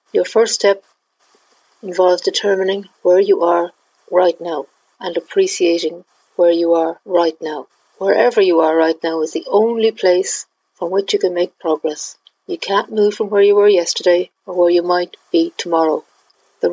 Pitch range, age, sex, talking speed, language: 175-215 Hz, 50-69, female, 170 wpm, English